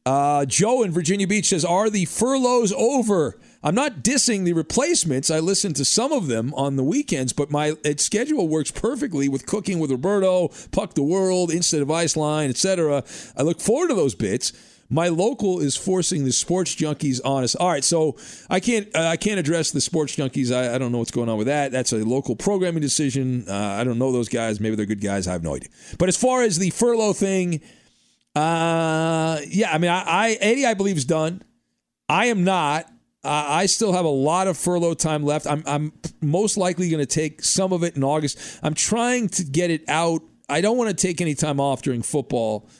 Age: 40-59